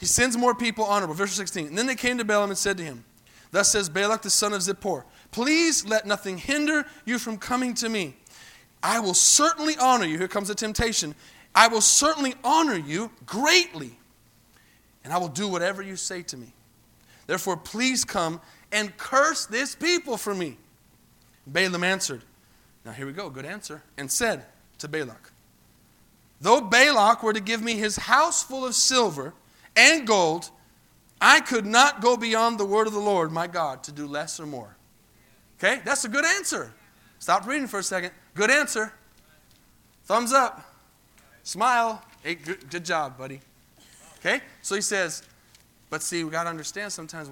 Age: 30-49